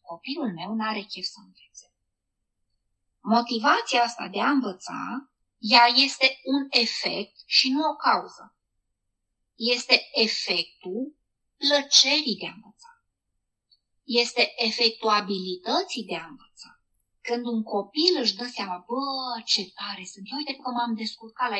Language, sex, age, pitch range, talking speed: Romanian, female, 20-39, 205-265 Hz, 130 wpm